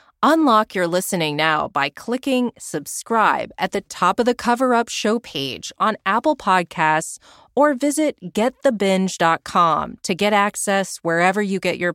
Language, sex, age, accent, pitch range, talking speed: English, female, 30-49, American, 155-225 Hz, 140 wpm